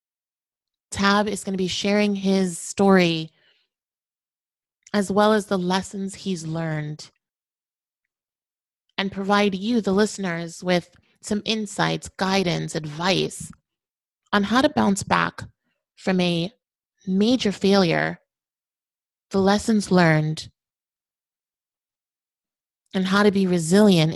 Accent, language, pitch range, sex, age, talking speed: American, English, 175-205 Hz, female, 30-49, 105 wpm